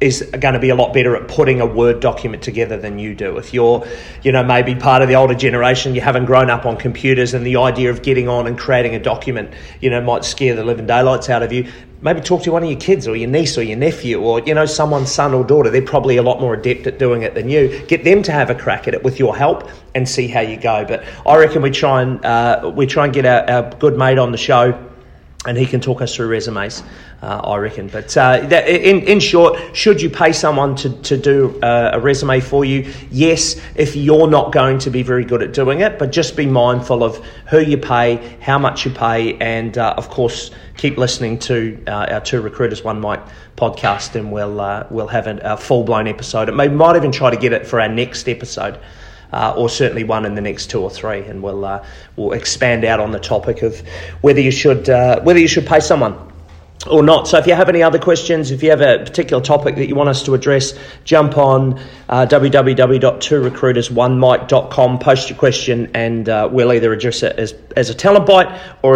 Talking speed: 235 wpm